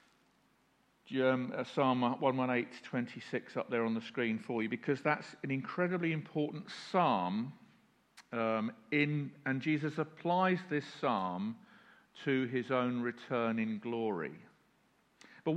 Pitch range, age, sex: 145-185 Hz, 50-69, male